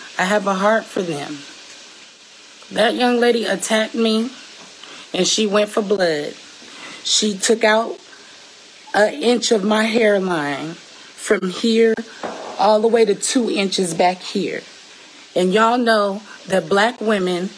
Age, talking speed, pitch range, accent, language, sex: 30-49, 135 wpm, 195-230 Hz, American, English, female